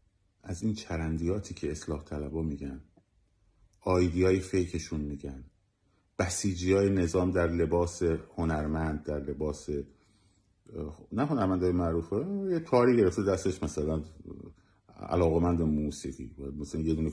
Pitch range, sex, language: 80-105 Hz, male, Persian